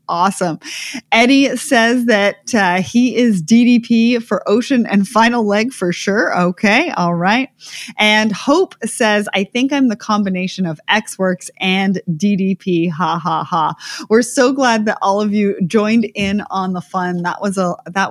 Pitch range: 180-240 Hz